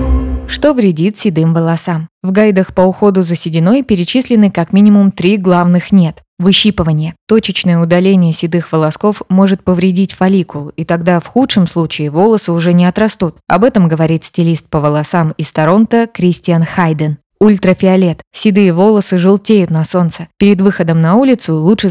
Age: 20-39